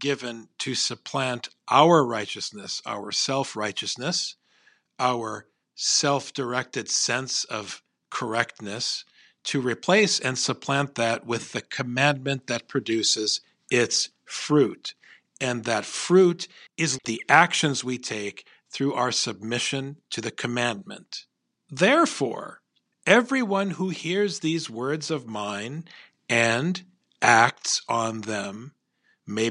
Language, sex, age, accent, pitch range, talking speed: English, male, 50-69, American, 115-150 Hz, 105 wpm